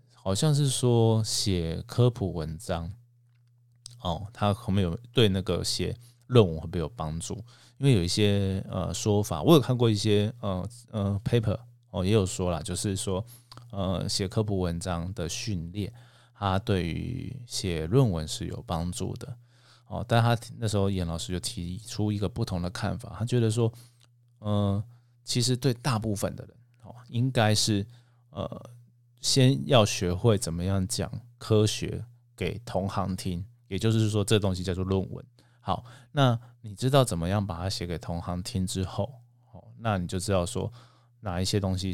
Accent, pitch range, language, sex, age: native, 95-120 Hz, Chinese, male, 20-39